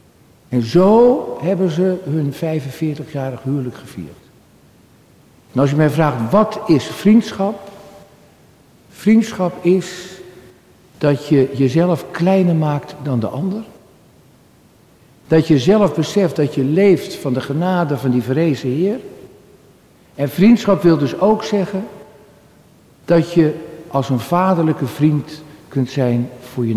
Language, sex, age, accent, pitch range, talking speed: Dutch, male, 60-79, Dutch, 125-175 Hz, 125 wpm